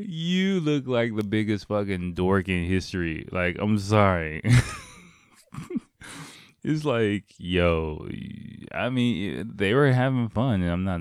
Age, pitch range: 20-39, 90-110 Hz